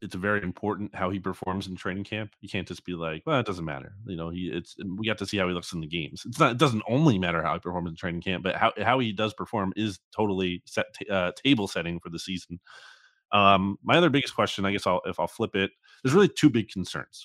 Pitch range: 90-110 Hz